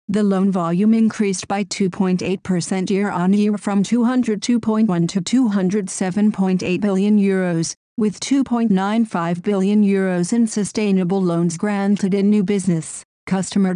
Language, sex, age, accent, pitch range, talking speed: German, female, 50-69, American, 185-215 Hz, 110 wpm